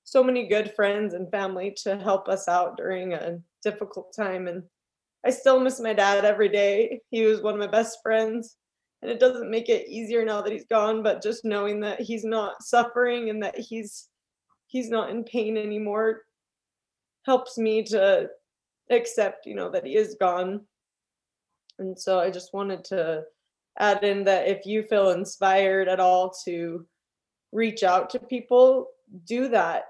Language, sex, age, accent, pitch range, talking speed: English, female, 20-39, American, 185-225 Hz, 175 wpm